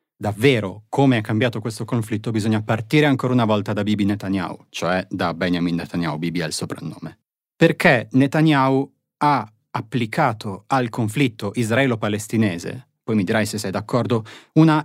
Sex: male